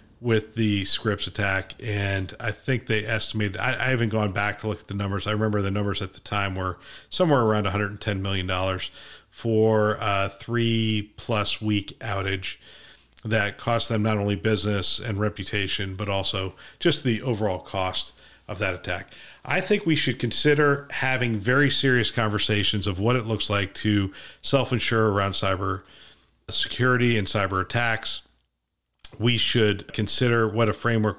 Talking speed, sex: 160 wpm, male